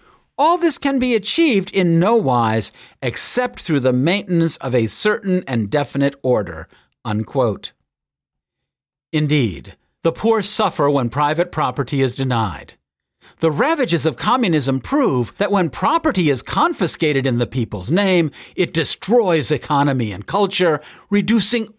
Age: 50-69